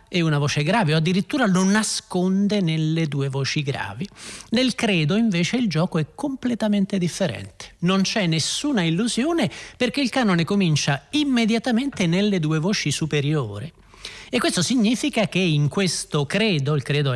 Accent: native